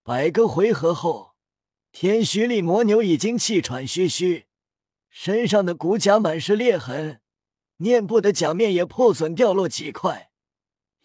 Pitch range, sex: 155-220 Hz, male